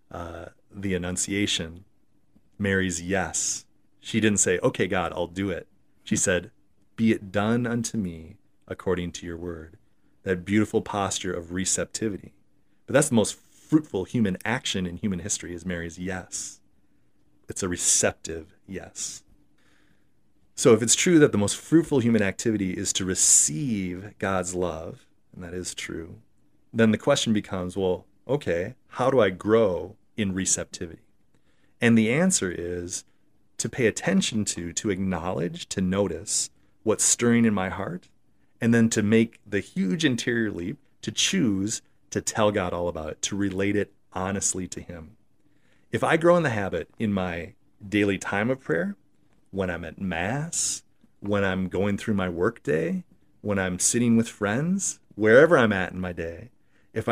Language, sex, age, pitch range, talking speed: English, male, 30-49, 90-115 Hz, 160 wpm